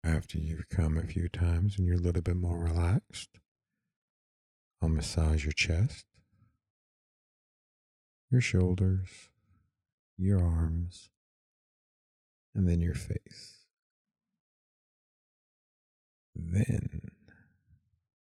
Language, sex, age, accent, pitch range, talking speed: English, male, 50-69, American, 80-100 Hz, 85 wpm